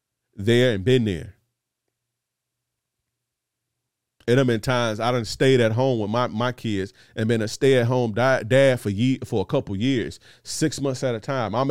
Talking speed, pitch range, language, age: 190 wpm, 110-130 Hz, English, 30-49